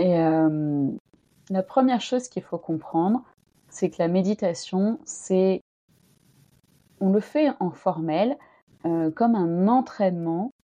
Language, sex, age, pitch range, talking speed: French, female, 30-49, 165-220 Hz, 125 wpm